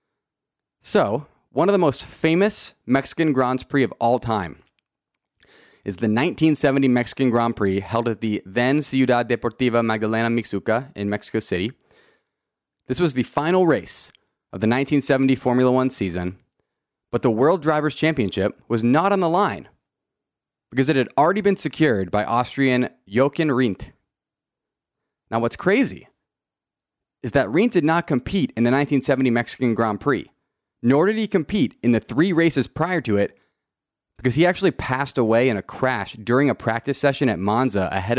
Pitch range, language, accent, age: 110-140 Hz, English, American, 30-49